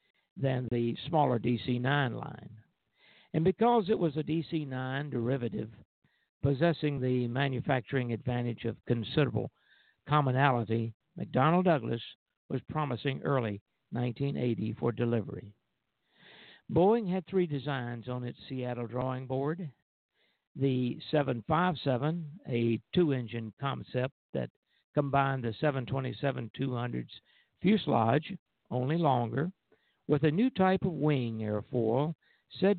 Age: 60-79